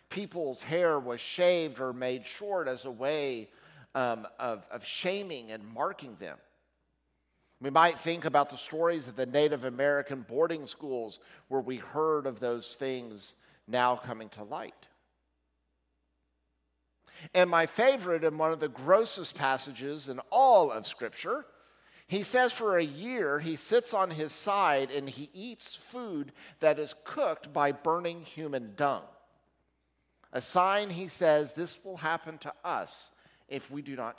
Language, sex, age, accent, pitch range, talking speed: English, male, 50-69, American, 125-175 Hz, 150 wpm